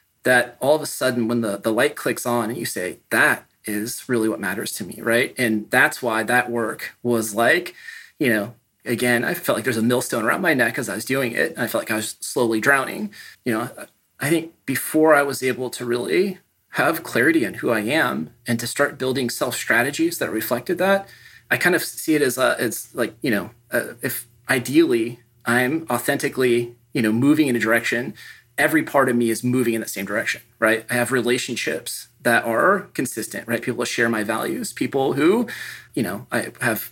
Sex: male